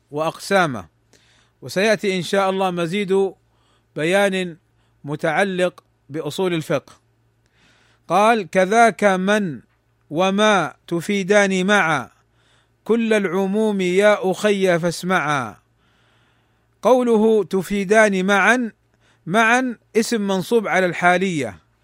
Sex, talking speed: male, 80 wpm